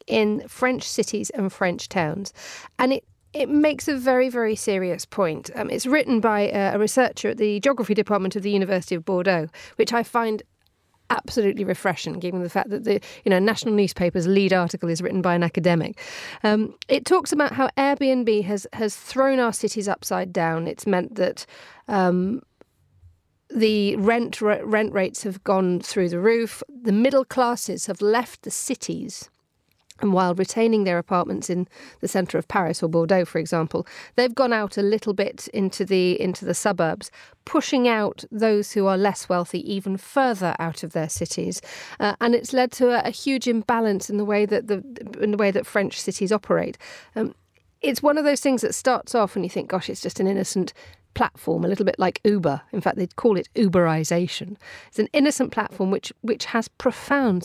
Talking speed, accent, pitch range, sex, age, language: 190 wpm, British, 185-235 Hz, female, 40-59, English